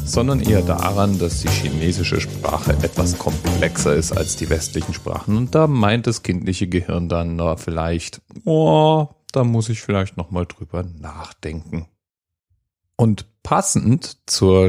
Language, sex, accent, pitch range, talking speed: German, male, German, 85-110 Hz, 135 wpm